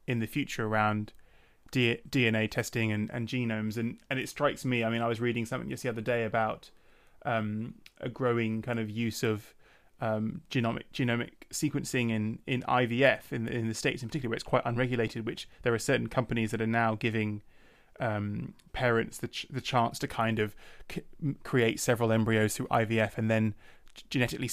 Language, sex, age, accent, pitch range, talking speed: English, male, 20-39, British, 110-125 Hz, 190 wpm